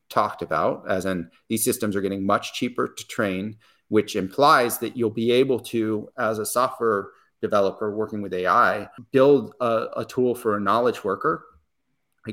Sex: male